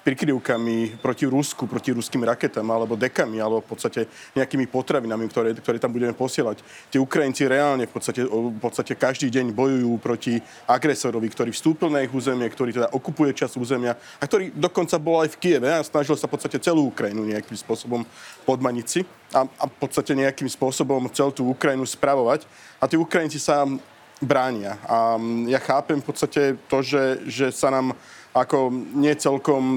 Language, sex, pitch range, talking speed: Slovak, male, 120-145 Hz, 170 wpm